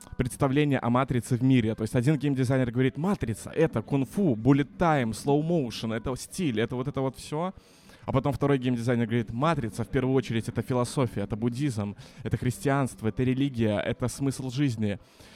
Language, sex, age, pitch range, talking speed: Russian, male, 20-39, 115-135 Hz, 170 wpm